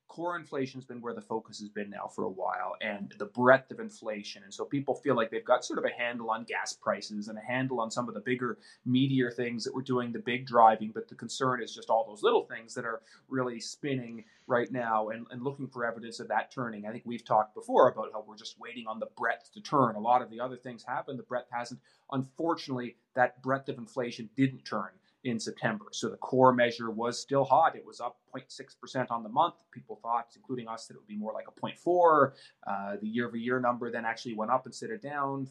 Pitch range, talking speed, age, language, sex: 115-135 Hz, 240 wpm, 30-49, English, male